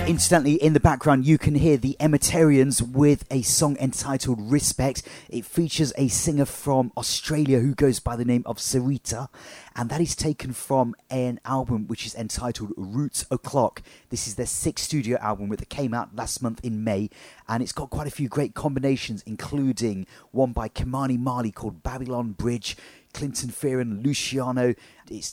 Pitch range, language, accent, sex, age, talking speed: 110-135 Hz, English, British, male, 30-49, 175 wpm